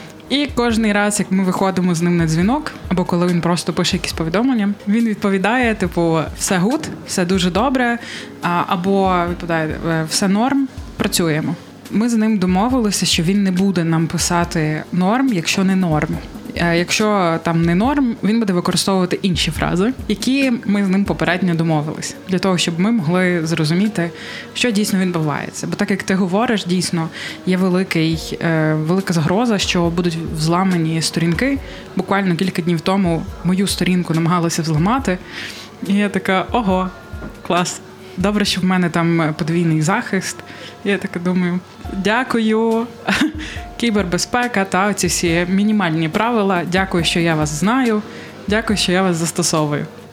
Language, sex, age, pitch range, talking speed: Ukrainian, female, 20-39, 170-205 Hz, 145 wpm